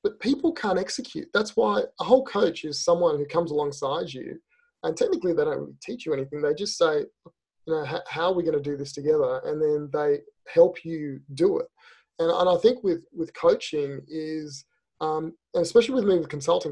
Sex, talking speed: male, 210 wpm